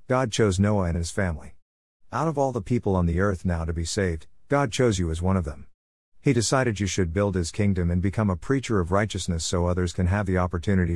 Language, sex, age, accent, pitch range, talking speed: English, male, 50-69, American, 90-110 Hz, 240 wpm